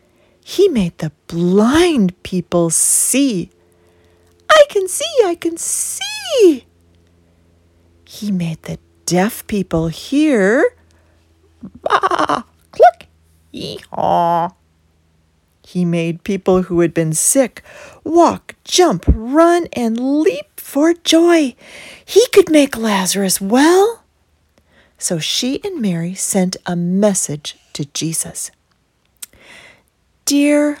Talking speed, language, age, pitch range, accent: 95 wpm, English, 40-59, 165-265 Hz, American